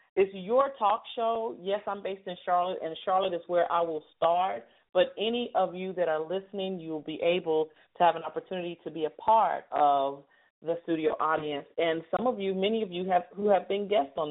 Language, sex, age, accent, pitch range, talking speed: English, female, 40-59, American, 155-195 Hz, 220 wpm